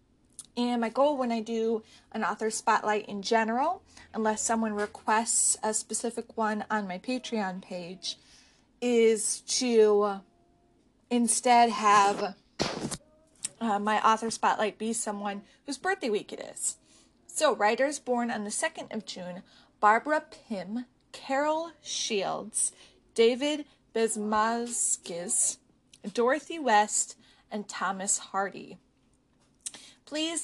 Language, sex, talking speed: English, female, 110 wpm